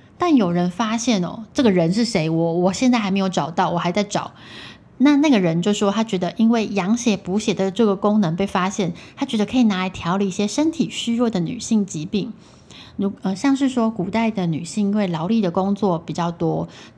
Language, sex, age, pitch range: Chinese, female, 20-39, 185-235 Hz